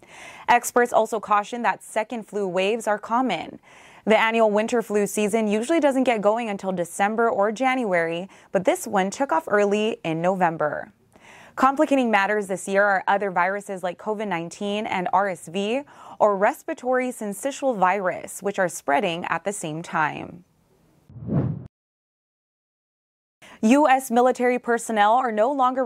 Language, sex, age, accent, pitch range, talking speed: English, female, 20-39, American, 190-235 Hz, 135 wpm